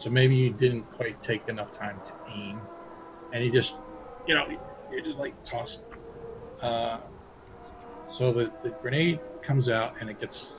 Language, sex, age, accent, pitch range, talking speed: English, male, 40-59, American, 110-140 Hz, 165 wpm